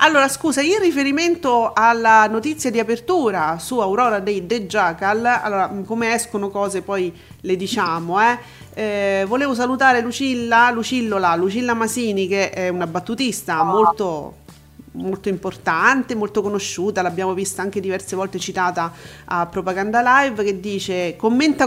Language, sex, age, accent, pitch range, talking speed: Italian, female, 40-59, native, 195-255 Hz, 135 wpm